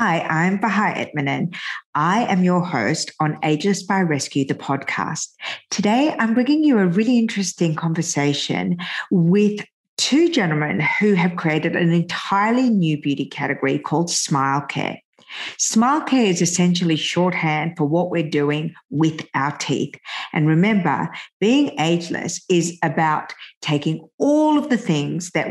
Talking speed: 140 wpm